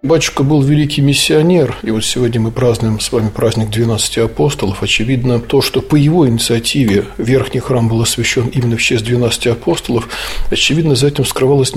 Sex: male